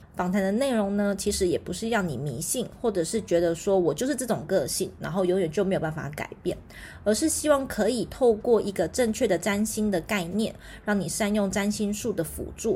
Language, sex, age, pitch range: Chinese, female, 20-39, 185-230 Hz